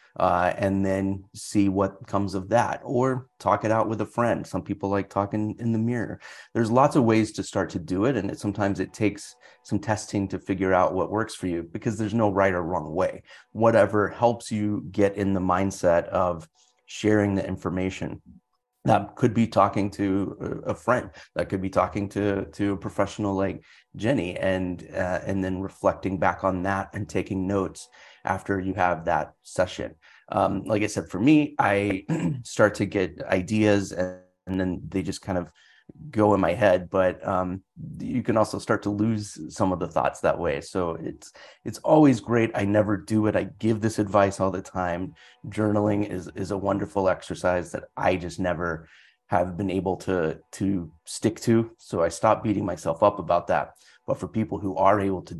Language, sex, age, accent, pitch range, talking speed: English, male, 30-49, American, 95-105 Hz, 195 wpm